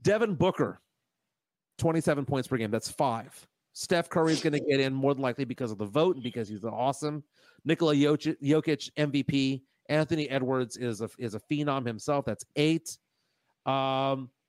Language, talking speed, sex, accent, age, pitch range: English, 170 wpm, male, American, 40-59, 130-165 Hz